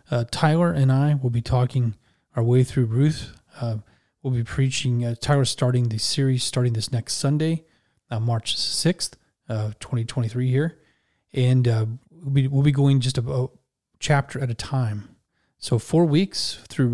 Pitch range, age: 115-140 Hz, 30-49